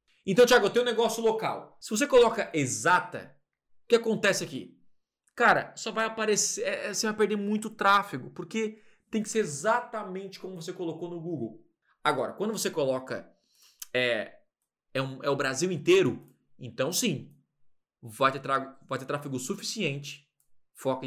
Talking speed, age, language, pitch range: 155 wpm, 20-39, Portuguese, 140-210 Hz